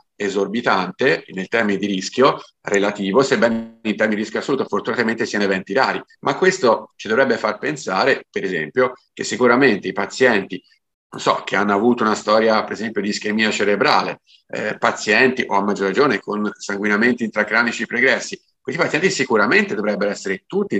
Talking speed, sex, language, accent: 160 wpm, male, English, Italian